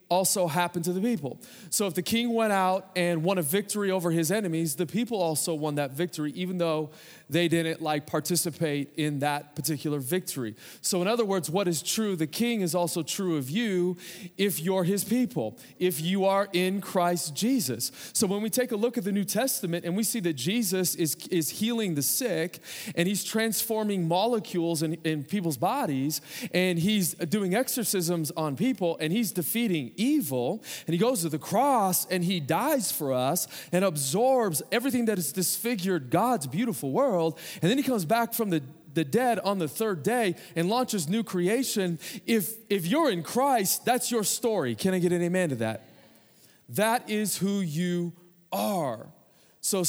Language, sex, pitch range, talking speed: English, male, 165-210 Hz, 185 wpm